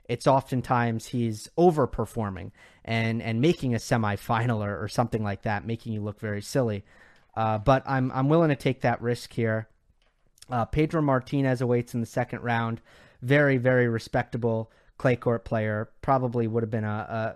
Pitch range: 110-145 Hz